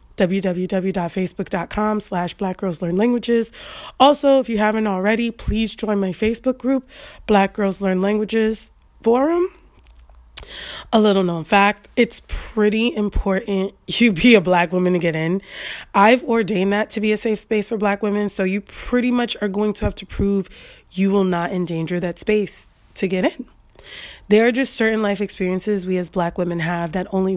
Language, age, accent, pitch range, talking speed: English, 20-39, American, 185-220 Hz, 170 wpm